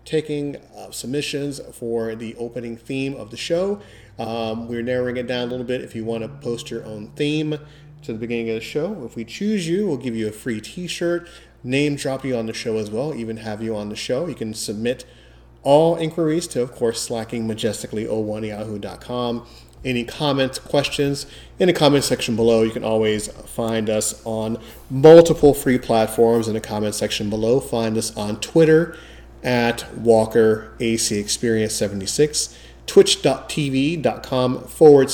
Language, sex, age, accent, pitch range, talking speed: English, male, 30-49, American, 110-140 Hz, 165 wpm